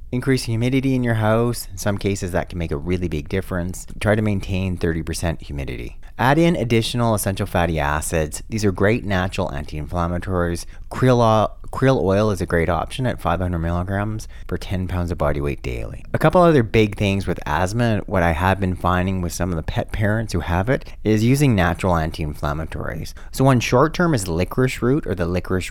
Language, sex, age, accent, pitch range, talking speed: English, male, 30-49, American, 85-115 Hz, 195 wpm